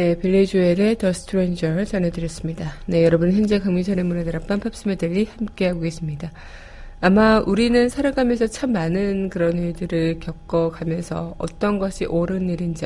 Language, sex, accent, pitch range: Korean, female, native, 175-220 Hz